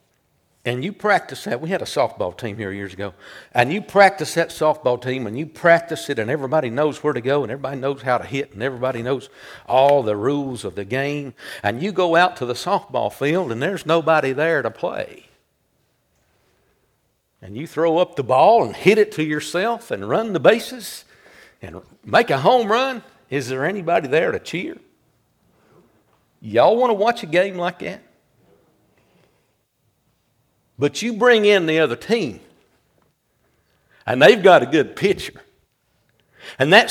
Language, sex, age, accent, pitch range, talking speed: English, male, 60-79, American, 135-195 Hz, 170 wpm